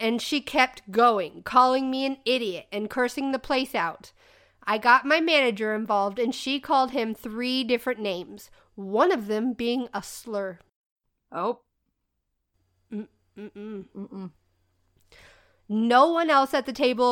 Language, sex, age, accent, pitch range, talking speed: English, female, 40-59, American, 205-255 Hz, 145 wpm